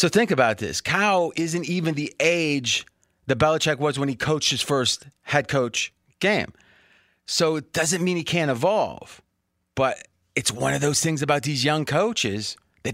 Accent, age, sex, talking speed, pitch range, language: American, 30-49, male, 175 wpm, 125-160 Hz, English